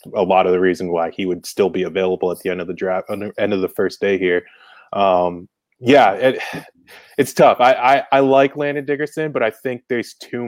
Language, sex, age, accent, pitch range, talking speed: English, male, 20-39, American, 95-110 Hz, 225 wpm